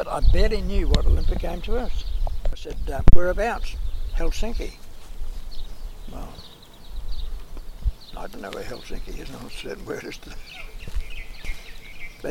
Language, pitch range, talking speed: English, 75-115 Hz, 125 wpm